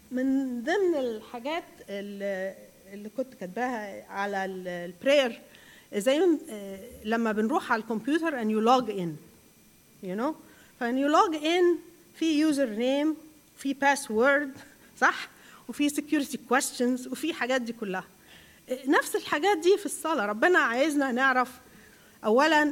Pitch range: 225-295 Hz